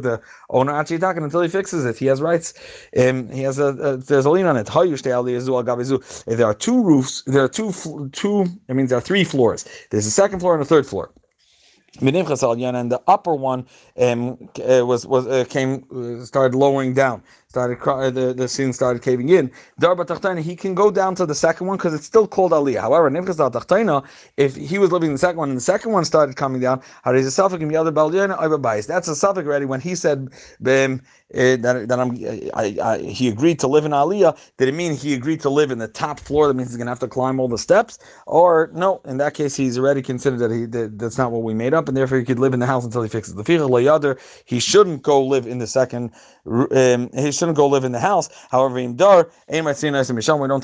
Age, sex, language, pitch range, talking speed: 30-49, male, English, 125-160 Hz, 220 wpm